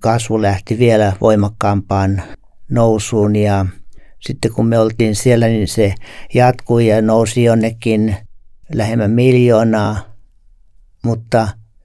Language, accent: Finnish, native